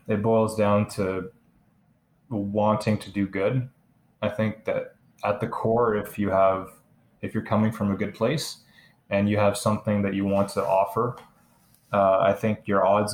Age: 20-39